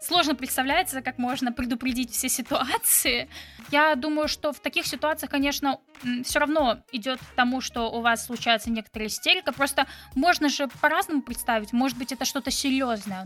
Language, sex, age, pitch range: Russian, female, 10-29, 235-295 Hz